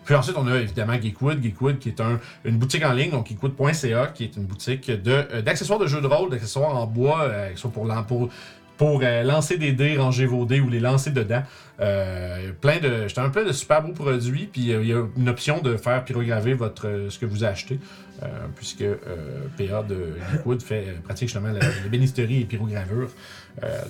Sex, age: male, 40-59